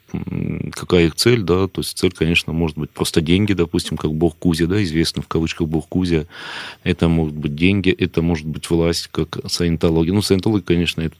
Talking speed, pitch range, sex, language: 195 wpm, 75-90 Hz, male, Russian